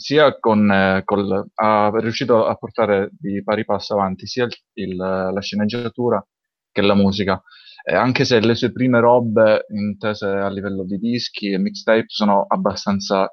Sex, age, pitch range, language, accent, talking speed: male, 20-39, 100-115 Hz, Italian, native, 160 wpm